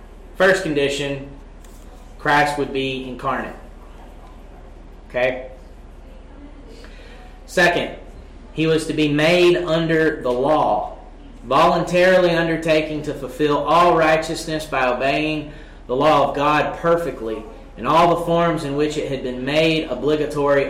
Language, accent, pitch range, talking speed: English, American, 125-155 Hz, 115 wpm